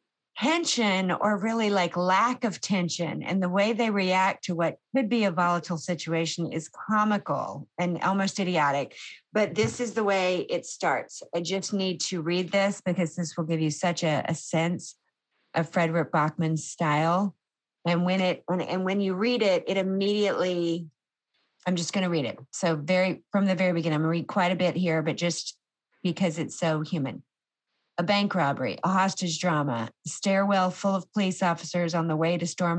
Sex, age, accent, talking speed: female, 40-59, American, 185 wpm